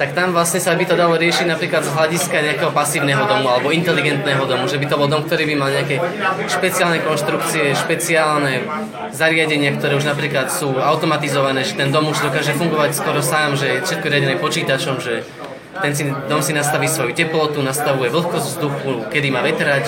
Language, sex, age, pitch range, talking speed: Slovak, male, 20-39, 140-170 Hz, 185 wpm